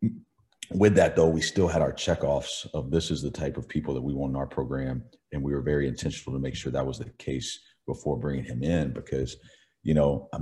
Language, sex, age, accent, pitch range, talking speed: English, male, 40-59, American, 65-80 Hz, 235 wpm